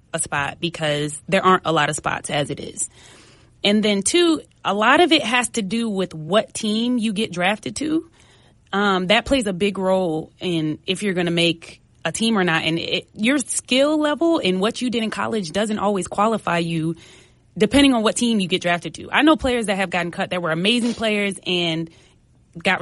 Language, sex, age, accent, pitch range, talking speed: English, female, 20-39, American, 170-220 Hz, 210 wpm